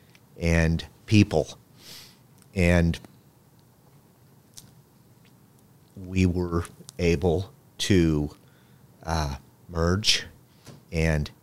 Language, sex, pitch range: English, male, 75-95 Hz